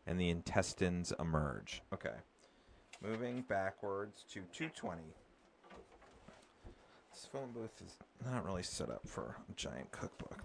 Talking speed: 120 wpm